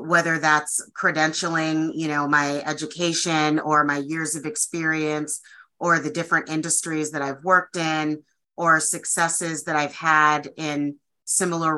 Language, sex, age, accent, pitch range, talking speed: English, female, 30-49, American, 150-170 Hz, 140 wpm